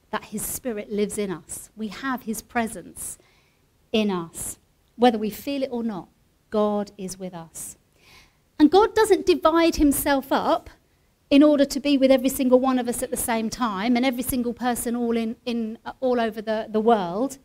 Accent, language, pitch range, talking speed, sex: British, English, 215-285 Hz, 185 wpm, female